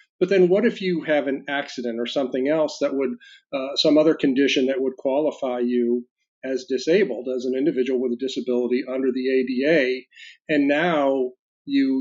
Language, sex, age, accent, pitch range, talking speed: English, male, 40-59, American, 125-155 Hz, 180 wpm